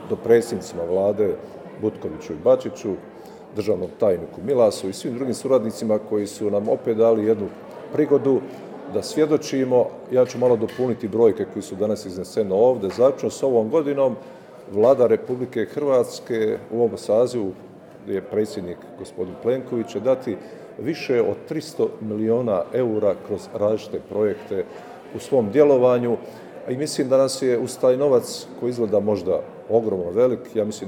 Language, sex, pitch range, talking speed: Croatian, male, 105-140 Hz, 140 wpm